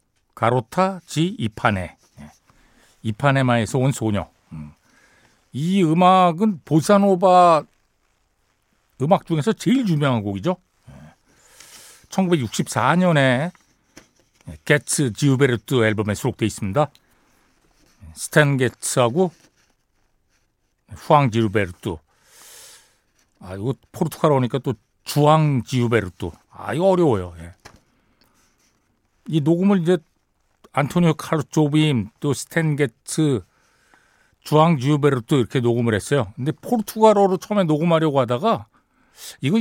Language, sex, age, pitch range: Korean, male, 60-79, 120-175 Hz